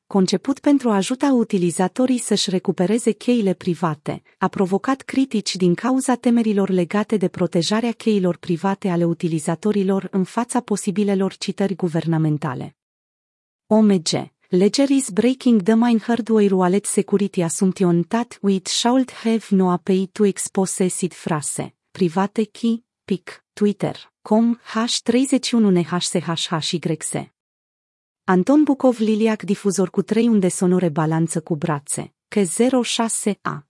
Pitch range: 175-225 Hz